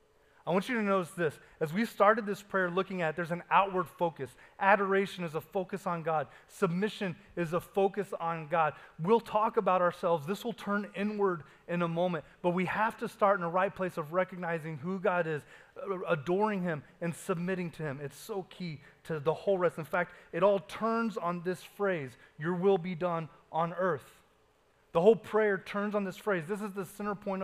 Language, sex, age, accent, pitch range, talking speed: English, male, 30-49, American, 160-200 Hz, 205 wpm